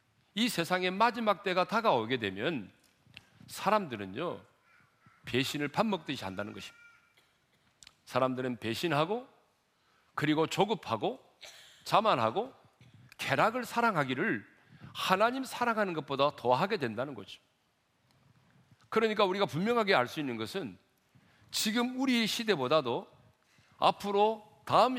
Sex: male